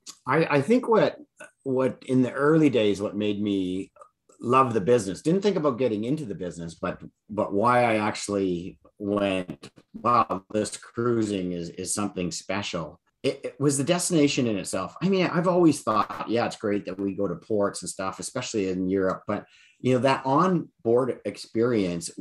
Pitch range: 95-130 Hz